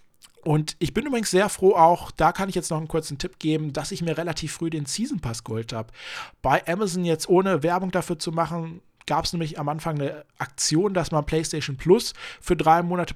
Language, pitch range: German, 145-175 Hz